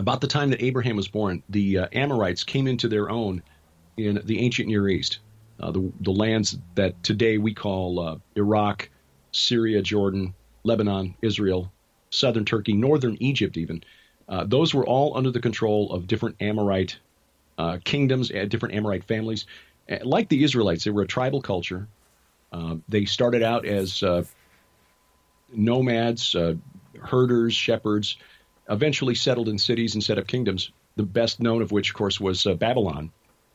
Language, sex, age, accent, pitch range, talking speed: English, male, 40-59, American, 95-120 Hz, 165 wpm